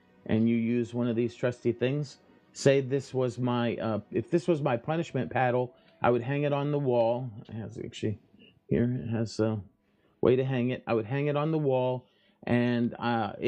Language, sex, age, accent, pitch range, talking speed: English, male, 30-49, American, 115-140 Hz, 200 wpm